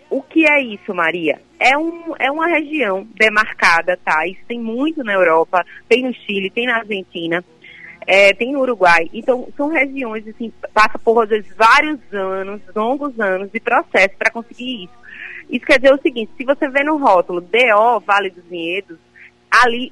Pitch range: 190-260 Hz